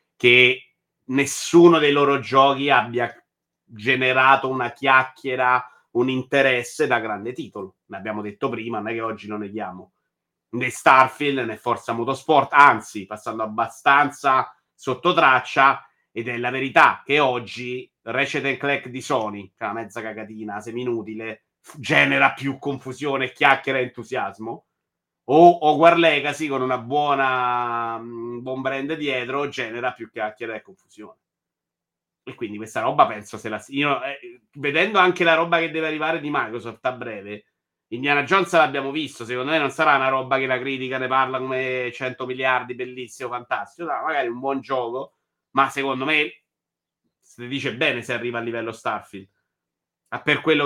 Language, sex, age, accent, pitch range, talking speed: Italian, male, 30-49, native, 120-140 Hz, 160 wpm